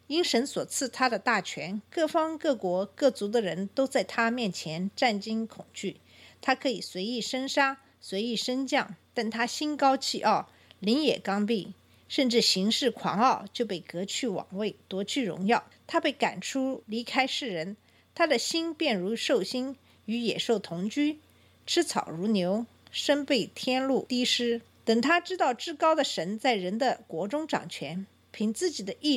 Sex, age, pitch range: female, 50-69, 205-280 Hz